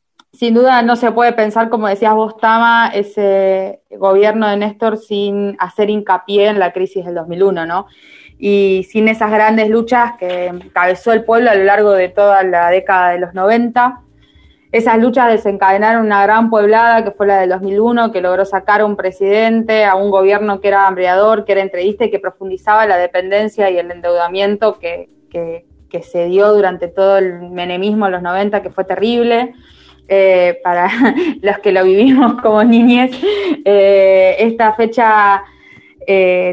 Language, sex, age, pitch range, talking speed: Spanish, female, 20-39, 190-225 Hz, 165 wpm